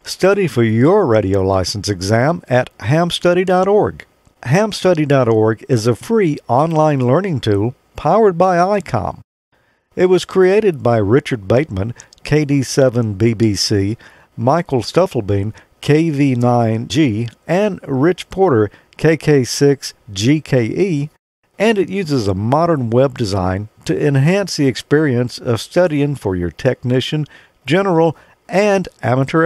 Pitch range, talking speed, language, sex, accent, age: 115-170 Hz, 105 wpm, English, male, American, 50-69